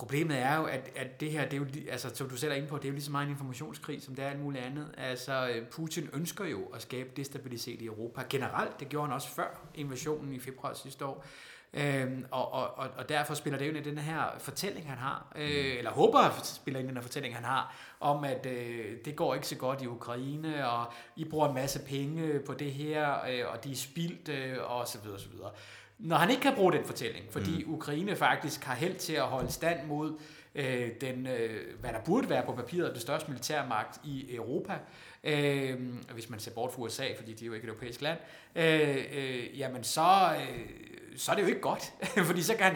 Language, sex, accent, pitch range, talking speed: English, male, Danish, 130-155 Hz, 225 wpm